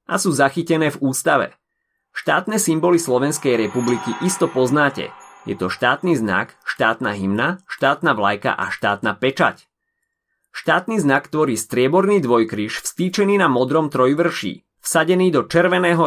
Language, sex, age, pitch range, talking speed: Slovak, male, 30-49, 115-165 Hz, 125 wpm